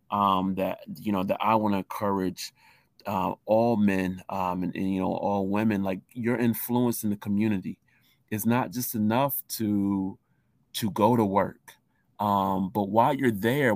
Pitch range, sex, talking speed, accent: 100-120 Hz, male, 170 wpm, American